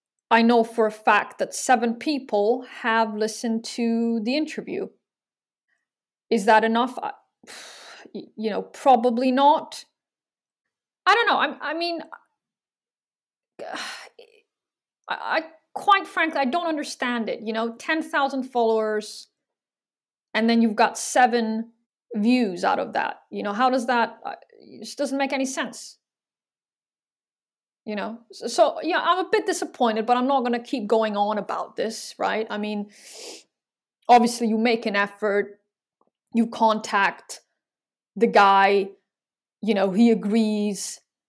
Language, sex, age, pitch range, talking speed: English, female, 30-49, 215-250 Hz, 135 wpm